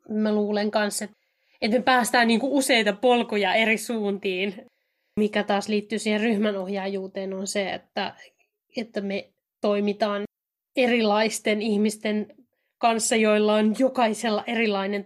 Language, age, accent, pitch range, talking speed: Finnish, 20-39, native, 205-245 Hz, 120 wpm